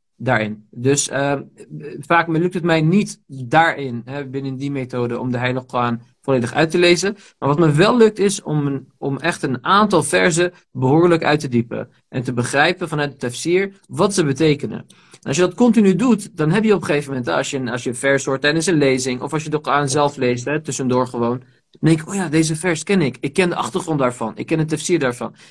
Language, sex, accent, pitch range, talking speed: Dutch, male, Dutch, 125-160 Hz, 235 wpm